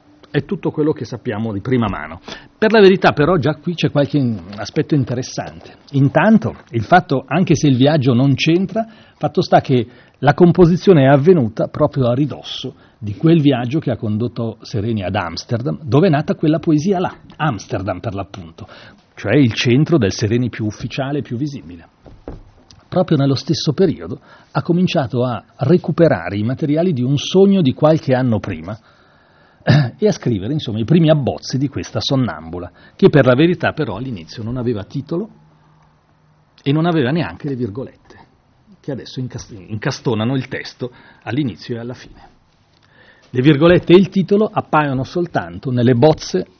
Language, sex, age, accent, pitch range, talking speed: Italian, male, 40-59, native, 120-160 Hz, 160 wpm